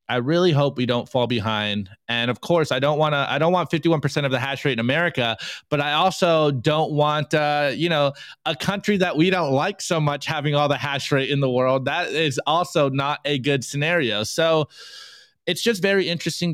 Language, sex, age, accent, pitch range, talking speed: English, male, 20-39, American, 120-160 Hz, 215 wpm